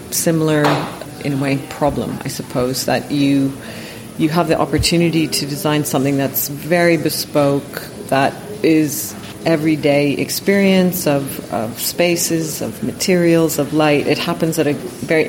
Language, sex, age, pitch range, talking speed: English, female, 40-59, 140-165 Hz, 135 wpm